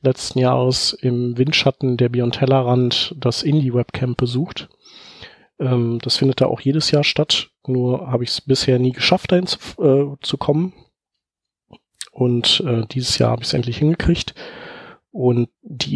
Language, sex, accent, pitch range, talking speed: German, male, German, 120-130 Hz, 135 wpm